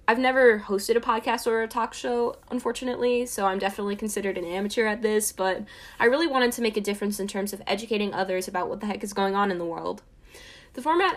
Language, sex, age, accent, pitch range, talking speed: English, female, 10-29, American, 190-235 Hz, 230 wpm